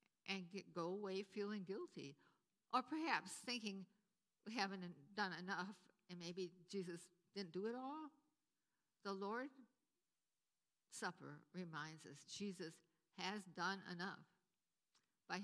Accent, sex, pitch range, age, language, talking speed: American, female, 170-220 Hz, 60-79, English, 115 wpm